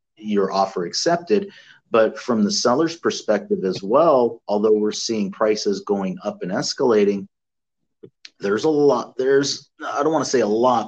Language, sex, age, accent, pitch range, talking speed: English, male, 30-49, American, 100-120 Hz, 160 wpm